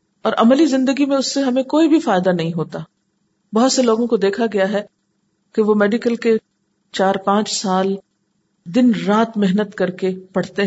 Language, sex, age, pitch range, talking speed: Urdu, female, 50-69, 190-245 Hz, 180 wpm